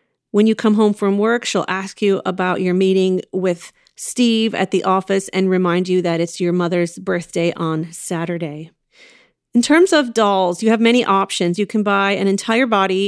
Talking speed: 190 wpm